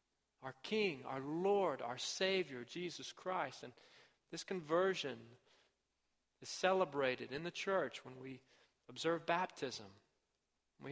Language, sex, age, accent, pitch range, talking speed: English, male, 40-59, American, 140-185 Hz, 115 wpm